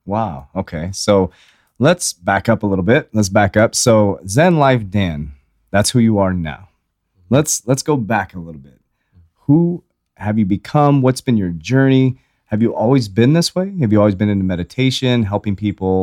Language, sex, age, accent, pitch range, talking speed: English, male, 30-49, American, 90-125 Hz, 185 wpm